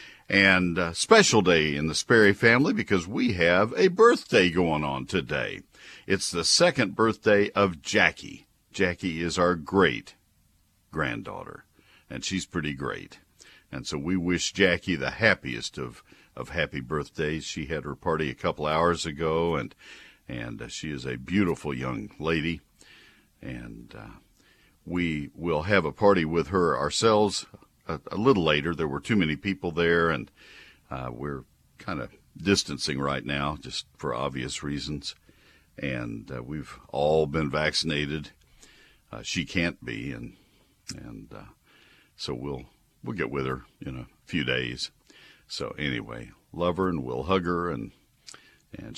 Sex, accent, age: male, American, 50-69